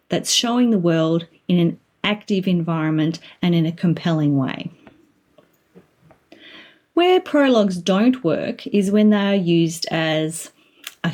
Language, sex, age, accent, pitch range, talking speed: English, female, 30-49, Australian, 170-240 Hz, 130 wpm